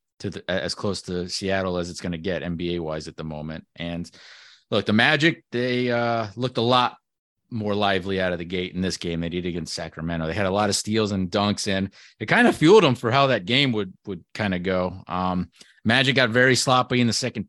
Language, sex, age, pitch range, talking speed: English, male, 30-49, 95-125 Hz, 240 wpm